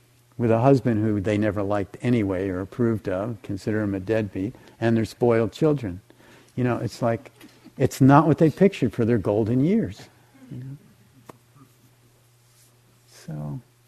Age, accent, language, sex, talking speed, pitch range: 50-69, American, English, male, 150 wpm, 120-130 Hz